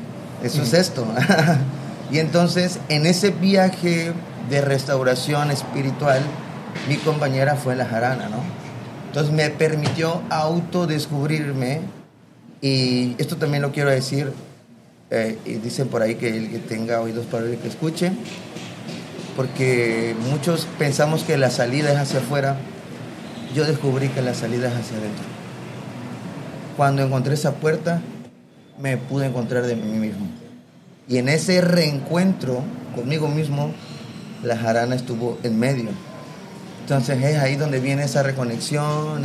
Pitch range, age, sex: 125-155 Hz, 30-49, male